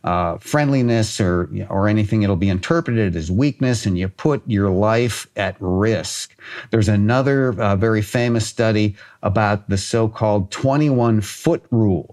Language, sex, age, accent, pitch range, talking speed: English, male, 50-69, American, 105-130 Hz, 140 wpm